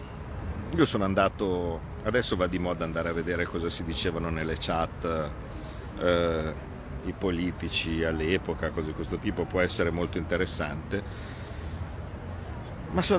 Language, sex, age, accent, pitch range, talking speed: Italian, male, 50-69, native, 85-100 Hz, 130 wpm